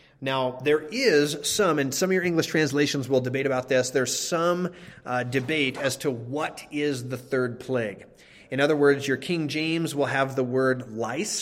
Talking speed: 190 wpm